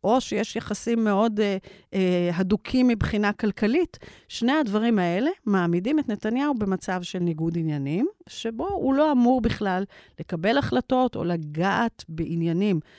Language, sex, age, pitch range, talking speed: Hebrew, female, 40-59, 165-235 Hz, 135 wpm